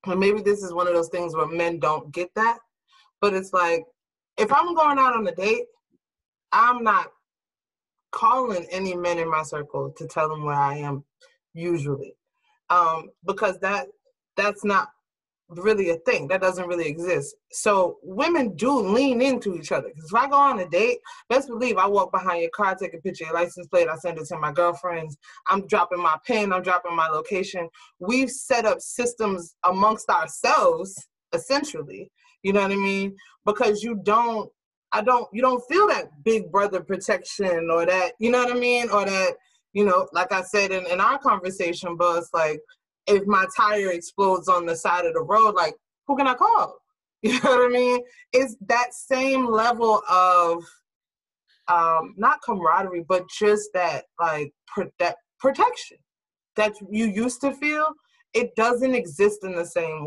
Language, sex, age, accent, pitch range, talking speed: English, female, 20-39, American, 175-245 Hz, 180 wpm